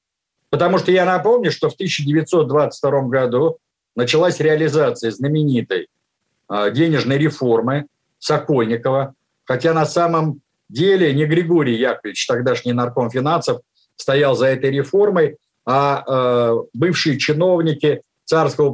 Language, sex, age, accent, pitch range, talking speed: Russian, male, 50-69, native, 130-165 Hz, 100 wpm